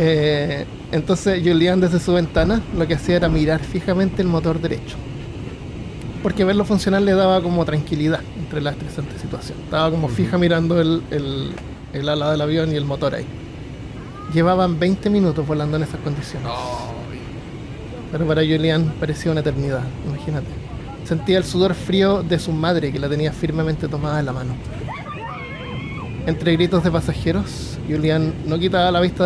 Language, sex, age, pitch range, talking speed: Spanish, male, 20-39, 145-175 Hz, 160 wpm